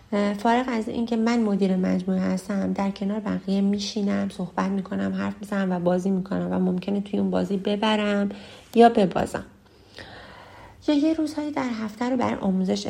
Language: Persian